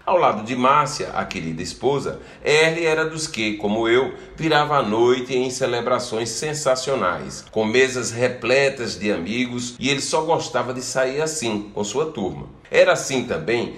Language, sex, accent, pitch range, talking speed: Portuguese, male, Brazilian, 105-155 Hz, 160 wpm